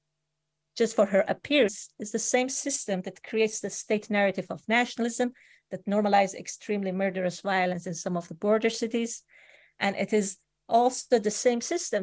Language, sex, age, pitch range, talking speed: English, female, 40-59, 185-225 Hz, 165 wpm